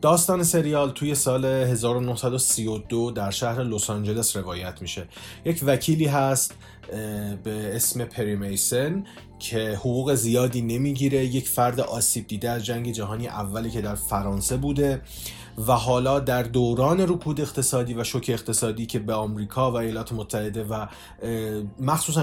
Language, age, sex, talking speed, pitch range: Persian, 30-49, male, 130 wpm, 110-135 Hz